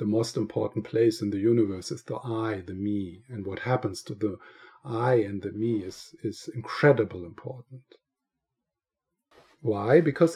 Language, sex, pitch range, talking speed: English, male, 110-145 Hz, 155 wpm